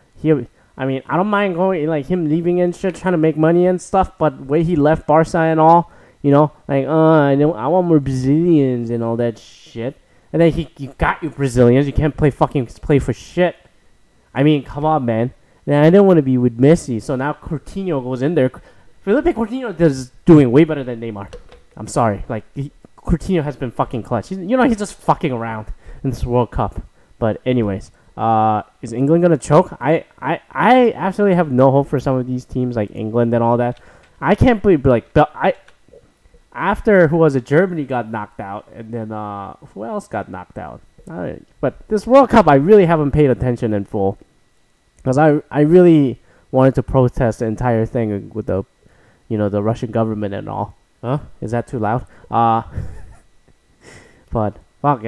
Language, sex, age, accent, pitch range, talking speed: English, male, 20-39, American, 115-160 Hz, 205 wpm